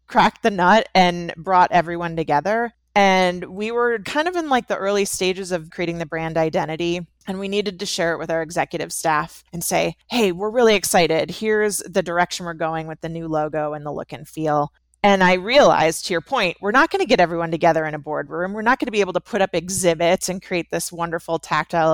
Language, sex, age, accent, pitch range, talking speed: English, female, 30-49, American, 165-205 Hz, 225 wpm